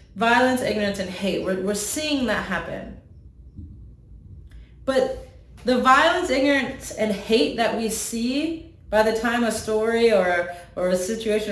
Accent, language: American, English